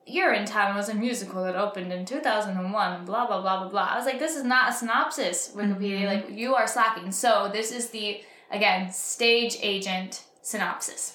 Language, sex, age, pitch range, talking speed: English, female, 10-29, 205-260 Hz, 195 wpm